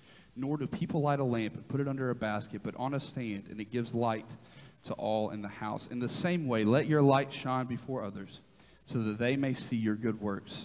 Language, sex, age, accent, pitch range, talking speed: English, male, 40-59, American, 110-130 Hz, 240 wpm